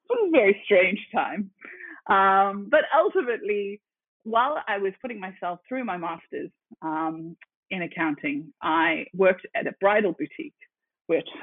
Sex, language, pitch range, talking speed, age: female, English, 170-230 Hz, 135 wpm, 30-49